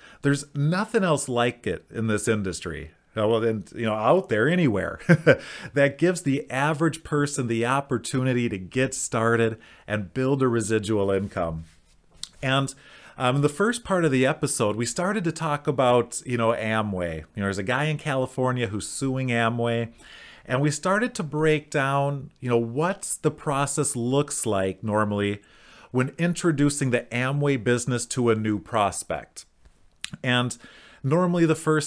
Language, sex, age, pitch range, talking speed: English, male, 30-49, 115-135 Hz, 155 wpm